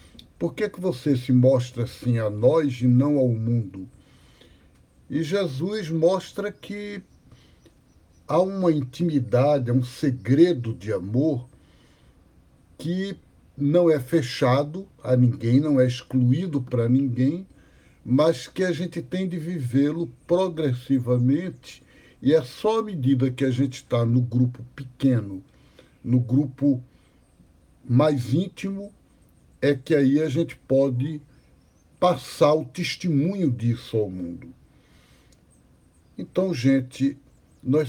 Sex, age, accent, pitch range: male, 60-79, Brazilian, 120-155 Hz